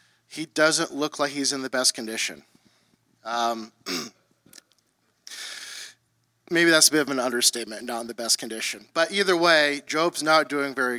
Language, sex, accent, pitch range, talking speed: English, male, American, 135-150 Hz, 160 wpm